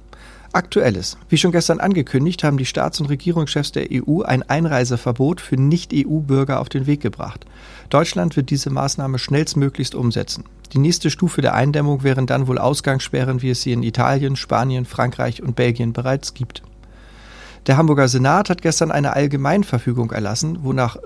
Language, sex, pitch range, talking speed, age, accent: German, male, 130-160 Hz, 155 wpm, 40-59, German